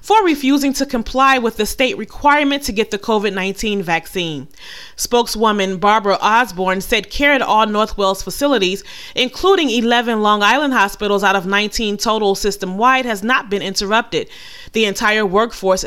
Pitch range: 205-275 Hz